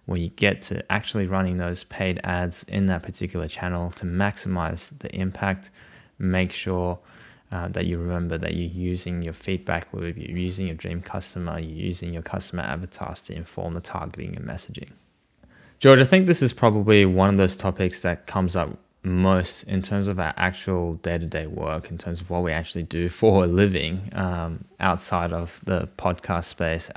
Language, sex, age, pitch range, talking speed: English, male, 20-39, 85-95 Hz, 180 wpm